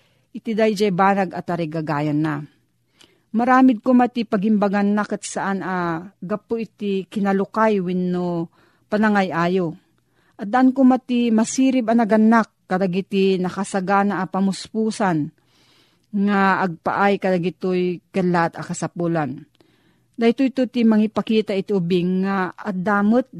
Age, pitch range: 40-59, 175-215 Hz